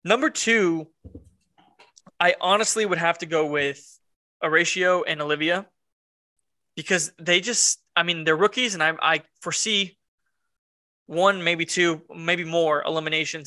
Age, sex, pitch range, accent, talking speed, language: 20-39, male, 150-185 Hz, American, 130 wpm, English